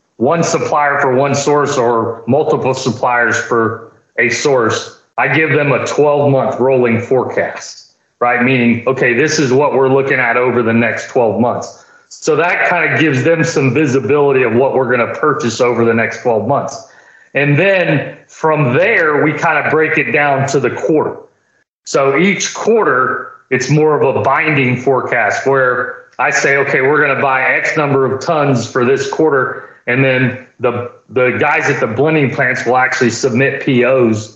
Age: 40-59